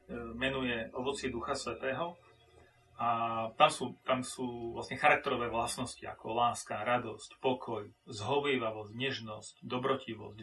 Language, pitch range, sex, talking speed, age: Slovak, 115-135 Hz, male, 110 wpm, 30-49